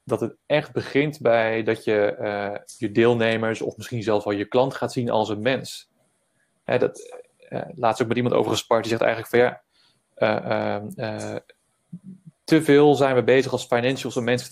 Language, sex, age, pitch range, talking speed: Dutch, male, 20-39, 110-130 Hz, 190 wpm